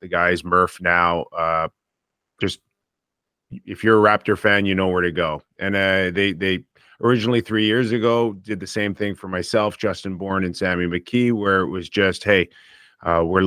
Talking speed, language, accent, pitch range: 185 wpm, English, American, 90-110 Hz